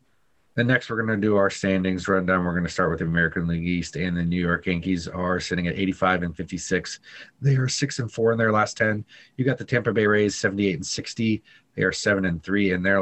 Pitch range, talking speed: 90-110 Hz, 250 wpm